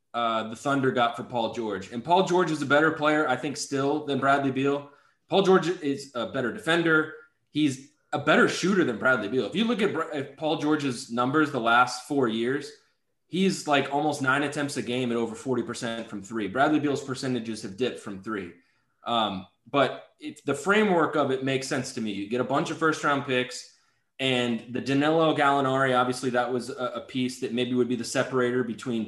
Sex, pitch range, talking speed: male, 120-150 Hz, 205 wpm